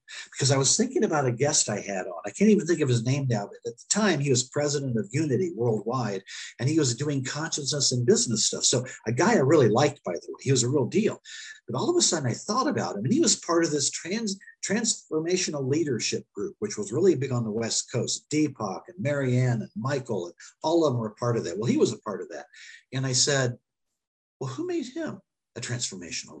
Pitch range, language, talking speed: 125-195 Hz, English, 245 wpm